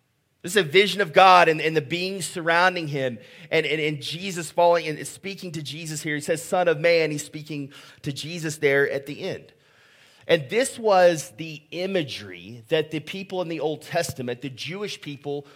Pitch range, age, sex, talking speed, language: 145-175 Hz, 30-49, male, 195 wpm, English